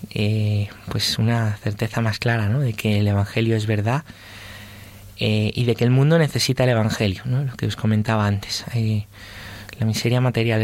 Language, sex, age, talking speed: Spanish, male, 20-39, 180 wpm